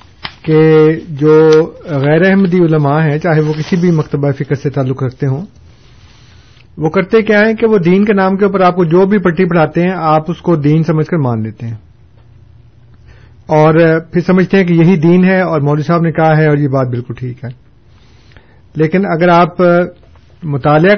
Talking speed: 190 wpm